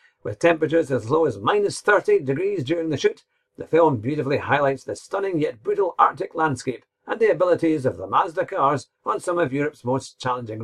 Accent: British